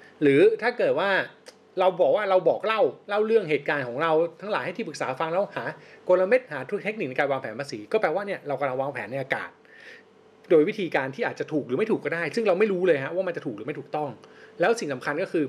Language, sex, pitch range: Thai, male, 155-215 Hz